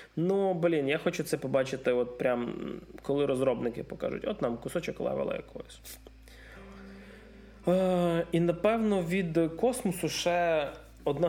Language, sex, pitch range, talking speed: Ukrainian, male, 130-170 Hz, 120 wpm